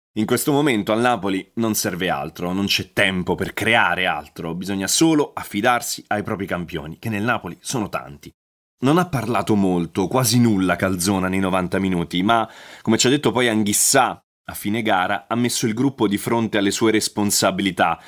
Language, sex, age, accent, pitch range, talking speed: Italian, male, 30-49, native, 95-115 Hz, 180 wpm